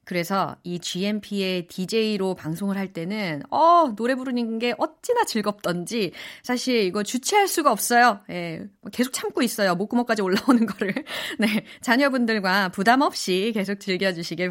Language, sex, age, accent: Korean, female, 30-49, native